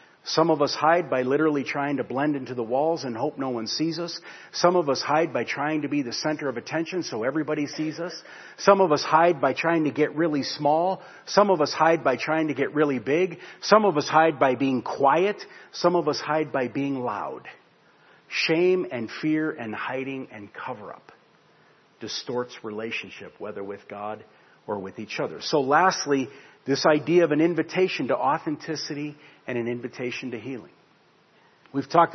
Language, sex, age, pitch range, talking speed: English, male, 50-69, 135-160 Hz, 185 wpm